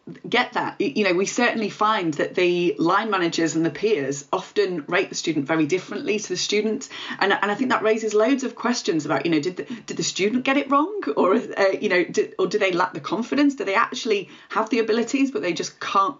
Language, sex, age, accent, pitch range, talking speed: English, female, 30-49, British, 175-270 Hz, 235 wpm